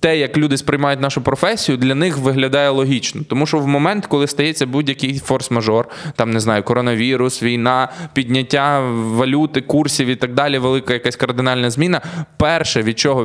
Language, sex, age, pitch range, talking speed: Ukrainian, male, 20-39, 130-165 Hz, 165 wpm